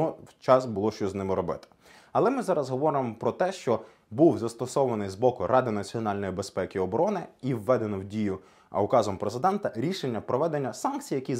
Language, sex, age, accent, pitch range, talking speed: Ukrainian, male, 20-39, native, 105-150 Hz, 180 wpm